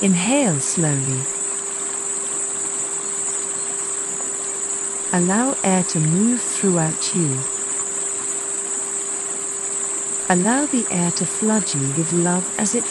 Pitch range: 155-220 Hz